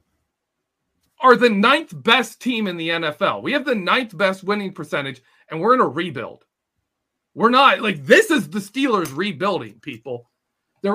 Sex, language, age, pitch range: male, English, 40-59, 195-275 Hz